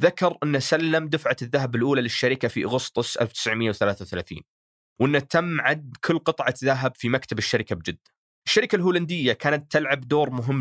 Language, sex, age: Arabic, male, 20-39